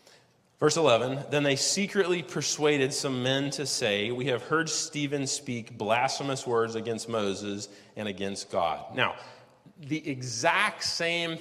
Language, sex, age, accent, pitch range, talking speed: English, male, 30-49, American, 105-140 Hz, 135 wpm